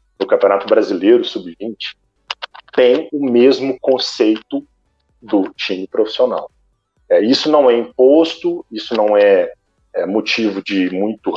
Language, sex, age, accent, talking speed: Portuguese, male, 40-59, Brazilian, 120 wpm